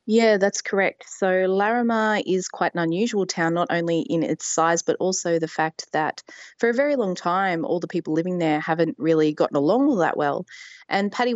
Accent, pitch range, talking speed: Australian, 150-185 Hz, 205 wpm